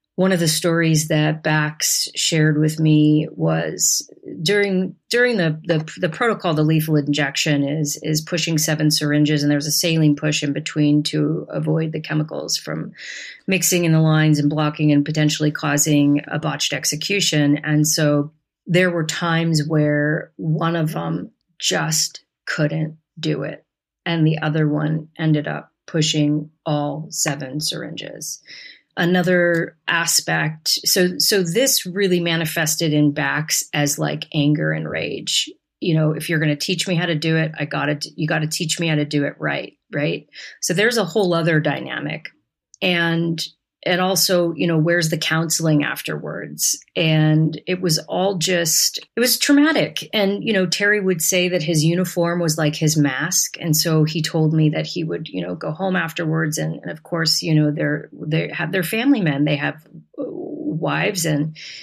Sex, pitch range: female, 150-170 Hz